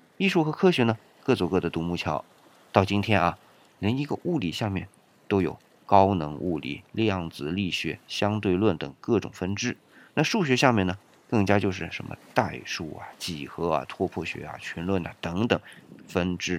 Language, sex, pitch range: Chinese, male, 90-140 Hz